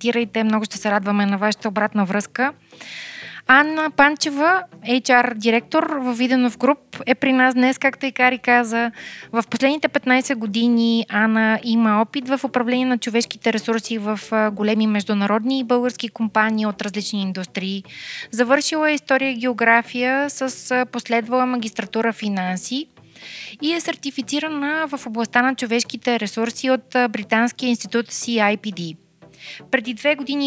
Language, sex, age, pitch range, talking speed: Bulgarian, female, 20-39, 215-255 Hz, 130 wpm